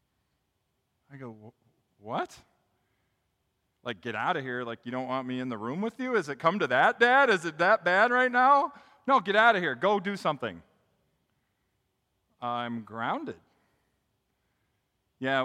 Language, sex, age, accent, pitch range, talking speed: English, male, 40-59, American, 125-185 Hz, 160 wpm